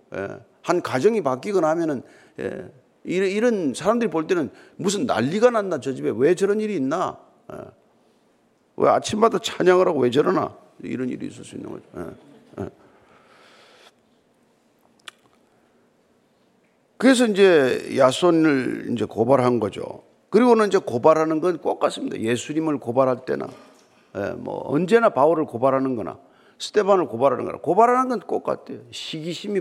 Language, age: Korean, 50-69